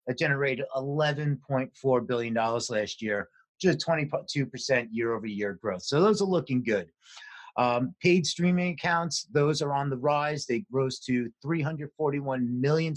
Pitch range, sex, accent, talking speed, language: 125-165 Hz, male, American, 165 wpm, English